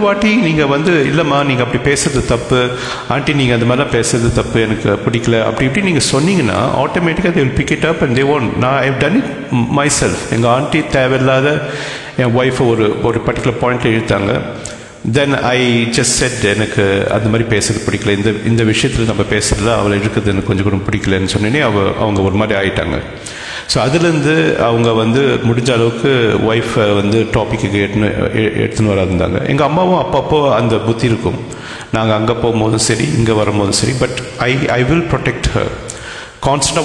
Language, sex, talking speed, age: English, male, 90 wpm, 50-69